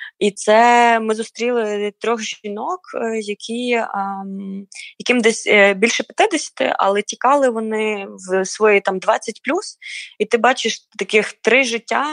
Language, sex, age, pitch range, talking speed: Ukrainian, female, 20-39, 190-230 Hz, 130 wpm